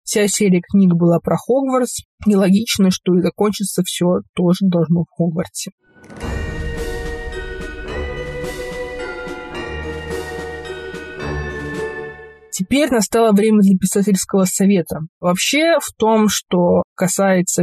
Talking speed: 90 wpm